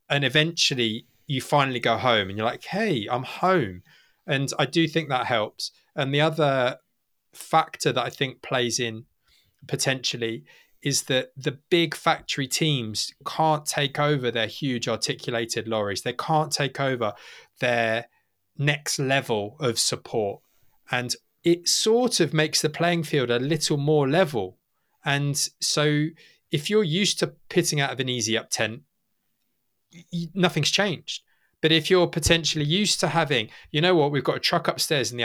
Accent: British